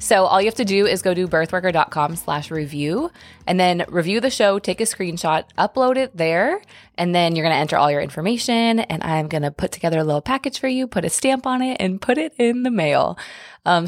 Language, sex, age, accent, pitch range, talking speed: English, female, 20-39, American, 160-220 Hz, 240 wpm